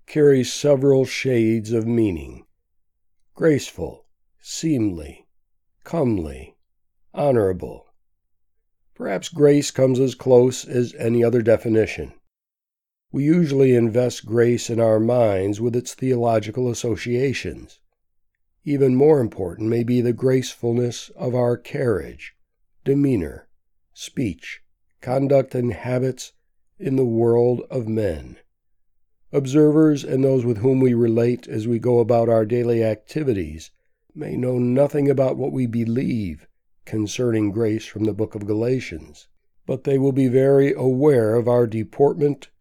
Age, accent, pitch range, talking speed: 60-79, American, 115-130 Hz, 120 wpm